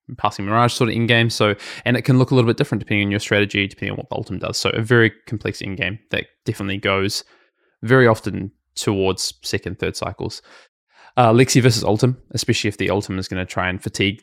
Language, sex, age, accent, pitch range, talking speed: English, male, 20-39, Australian, 100-110 Hz, 230 wpm